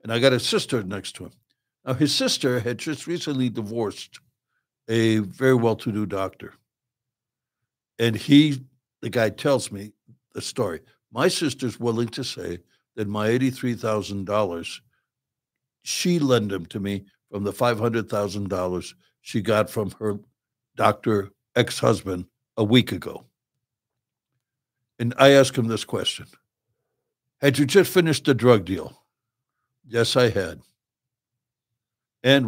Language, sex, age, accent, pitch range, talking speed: English, male, 60-79, American, 105-130 Hz, 125 wpm